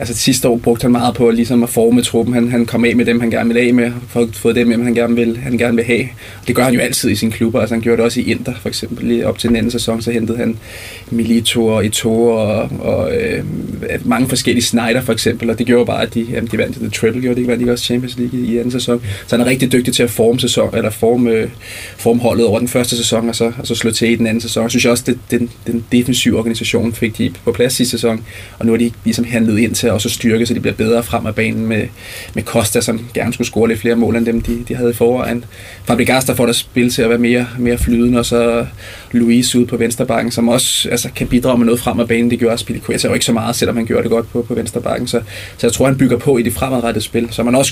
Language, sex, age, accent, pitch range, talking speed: Danish, male, 20-39, native, 115-120 Hz, 275 wpm